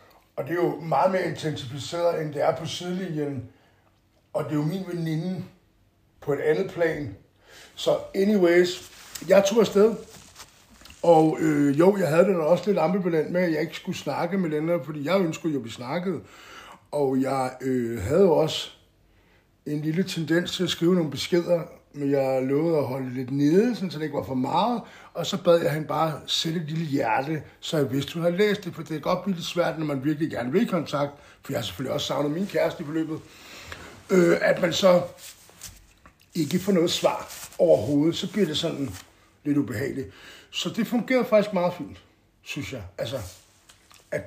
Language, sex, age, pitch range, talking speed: Danish, male, 60-79, 135-180 Hz, 190 wpm